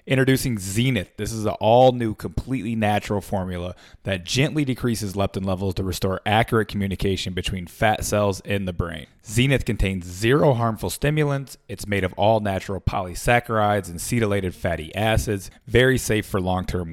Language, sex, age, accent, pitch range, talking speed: English, male, 30-49, American, 95-120 Hz, 150 wpm